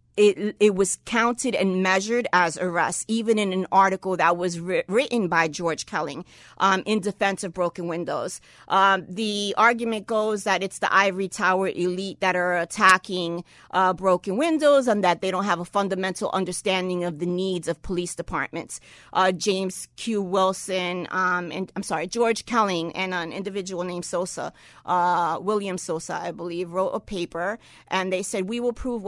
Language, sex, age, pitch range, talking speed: English, female, 40-59, 180-215 Hz, 175 wpm